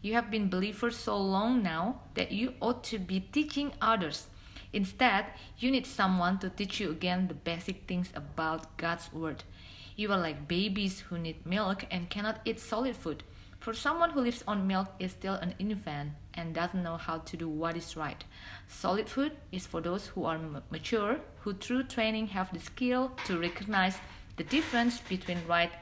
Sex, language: female, Indonesian